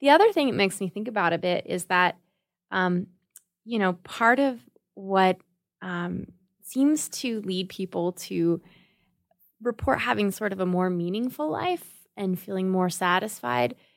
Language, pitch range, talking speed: English, 180-225 Hz, 155 wpm